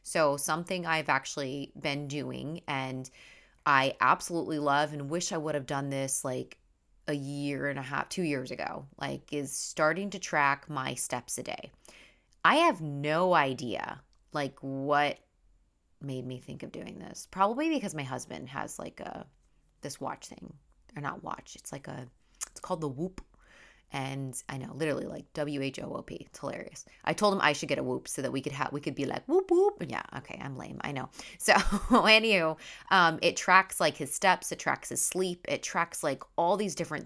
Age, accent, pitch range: 20-39, American, 140-170 Hz